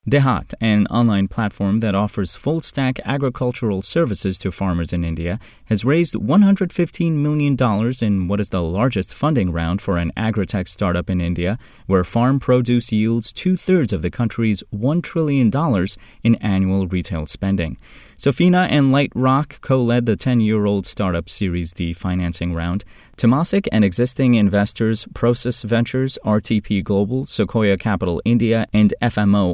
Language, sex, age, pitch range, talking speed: English, male, 20-39, 95-125 Hz, 140 wpm